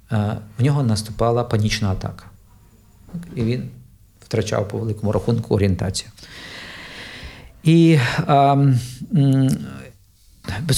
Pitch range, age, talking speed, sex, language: 105-145 Hz, 50-69, 85 wpm, male, Ukrainian